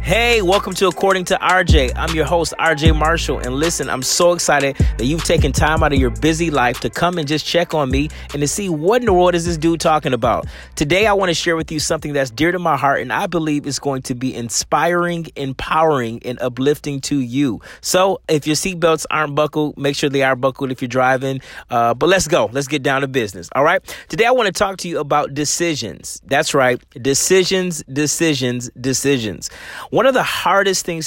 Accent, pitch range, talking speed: American, 135-170 Hz, 215 wpm